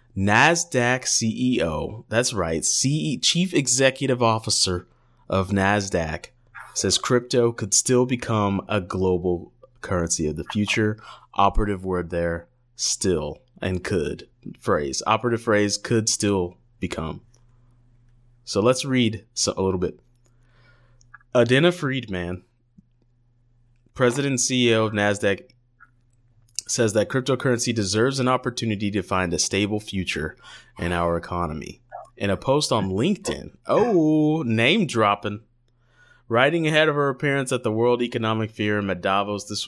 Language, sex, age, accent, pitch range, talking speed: English, male, 20-39, American, 95-120 Hz, 125 wpm